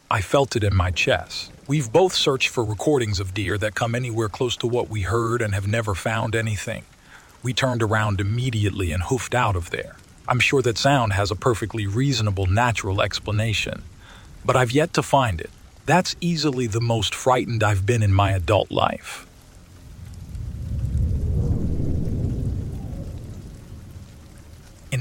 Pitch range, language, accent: 100-130 Hz, English, American